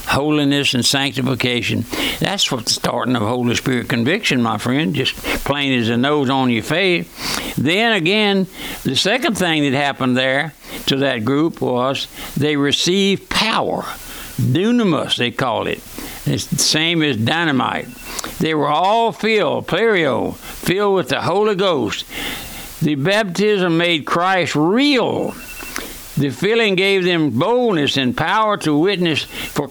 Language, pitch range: English, 130-180 Hz